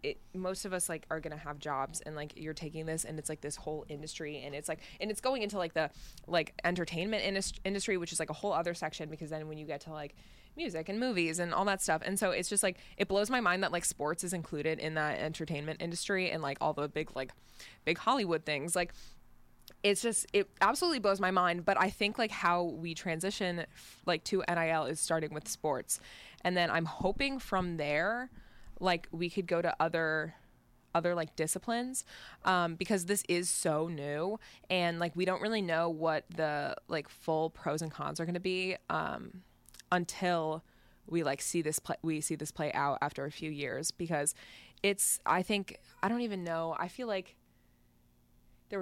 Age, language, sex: 20-39, English, female